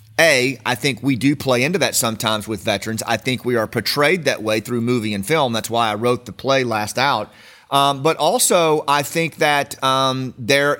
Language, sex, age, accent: English, male, 30-49, American